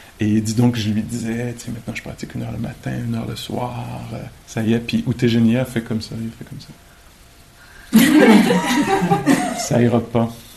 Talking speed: 200 wpm